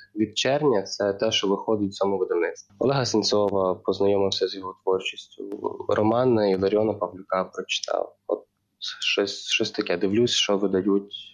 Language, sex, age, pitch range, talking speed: Ukrainian, male, 20-39, 100-120 Hz, 145 wpm